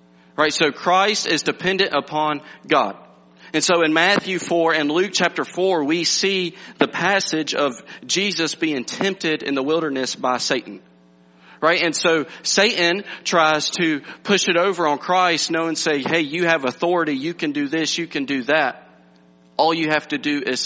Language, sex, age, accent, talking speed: English, male, 40-59, American, 175 wpm